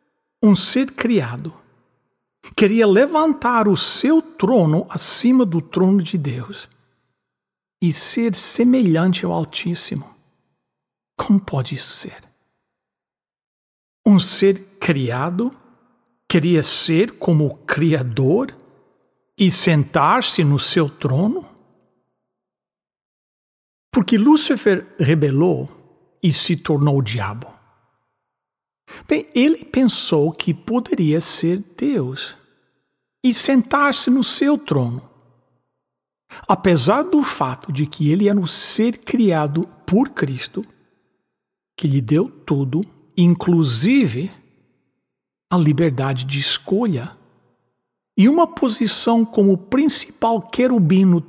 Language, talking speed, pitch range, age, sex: English, 95 wpm, 150-230 Hz, 60-79, male